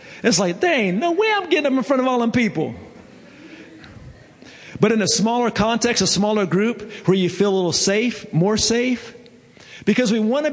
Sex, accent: male, American